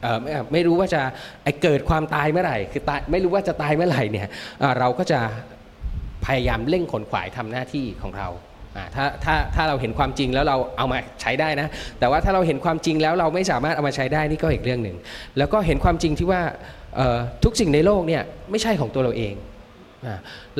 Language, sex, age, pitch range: Thai, male, 20-39, 115-165 Hz